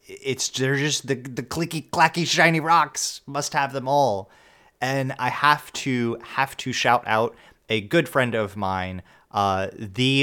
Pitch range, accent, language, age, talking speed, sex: 100-120 Hz, American, English, 30-49, 165 wpm, male